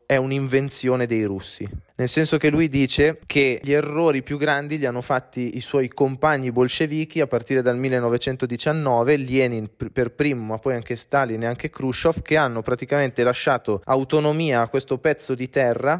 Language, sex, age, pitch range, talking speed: Italian, male, 20-39, 115-145 Hz, 170 wpm